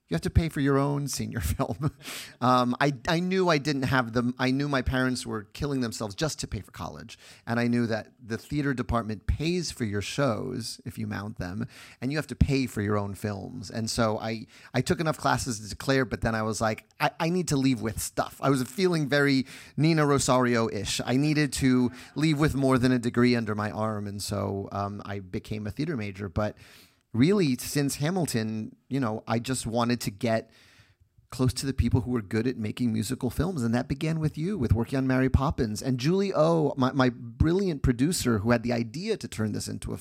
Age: 30-49